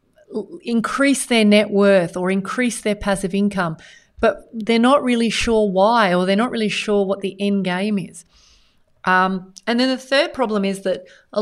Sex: female